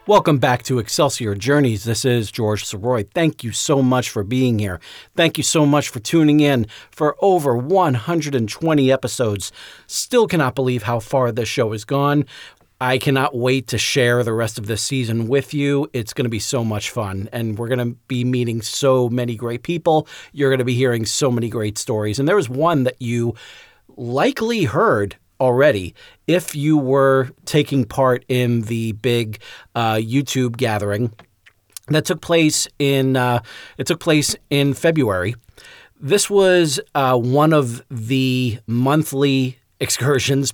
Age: 40-59